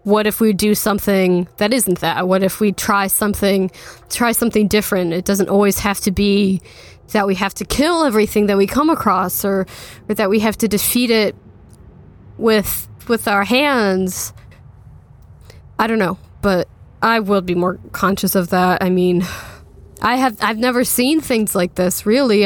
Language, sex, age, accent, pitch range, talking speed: English, female, 10-29, American, 190-220 Hz, 175 wpm